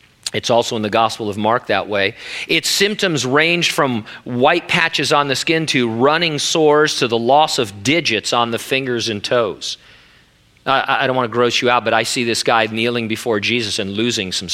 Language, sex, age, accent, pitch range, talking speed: English, male, 40-59, American, 120-175 Hz, 205 wpm